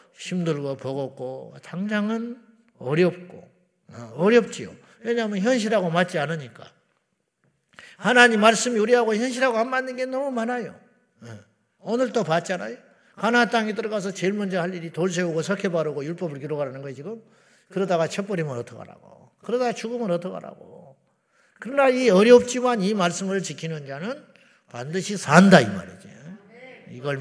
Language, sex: Korean, male